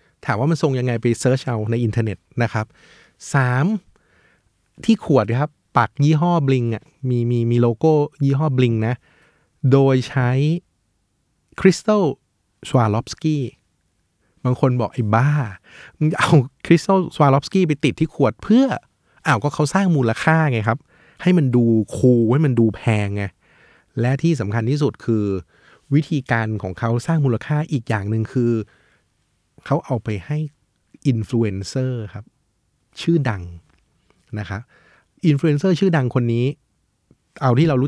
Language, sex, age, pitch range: Thai, male, 20-39, 115-150 Hz